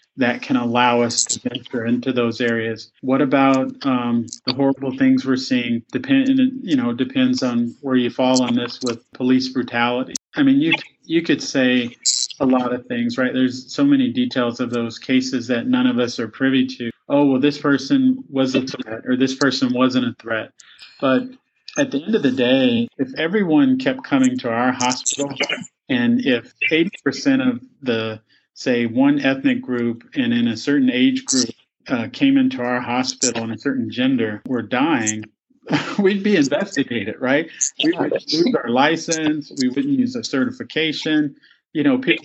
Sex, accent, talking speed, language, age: male, American, 180 wpm, English, 30-49